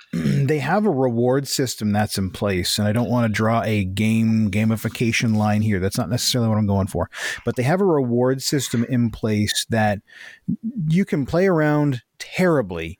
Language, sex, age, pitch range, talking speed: English, male, 30-49, 110-140 Hz, 185 wpm